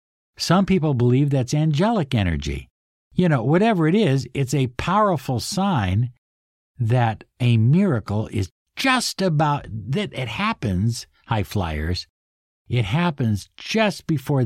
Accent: American